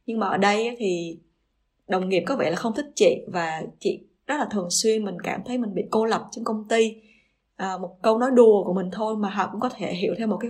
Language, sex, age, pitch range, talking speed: Vietnamese, female, 20-39, 180-225 Hz, 265 wpm